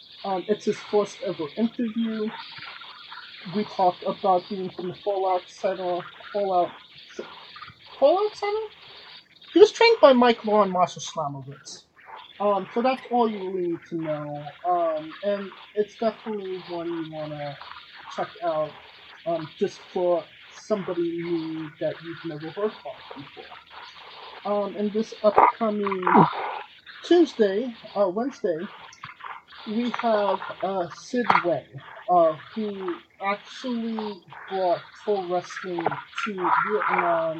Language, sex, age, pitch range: English, male, 30-49, 175-225 Hz